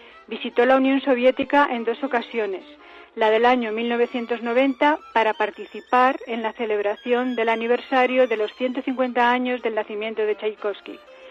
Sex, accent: female, Spanish